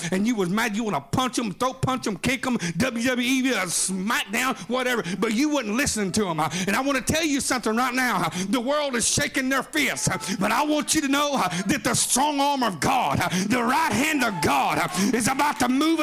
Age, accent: 50-69, American